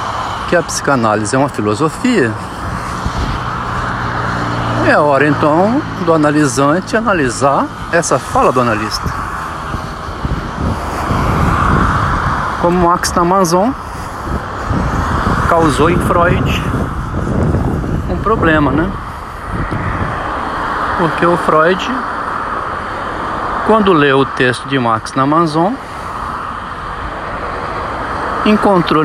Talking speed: 80 wpm